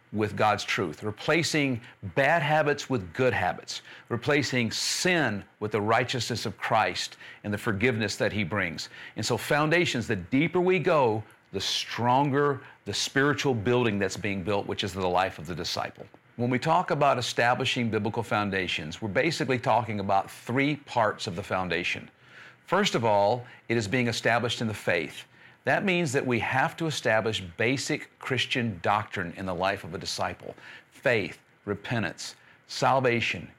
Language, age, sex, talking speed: English, 50-69, male, 160 wpm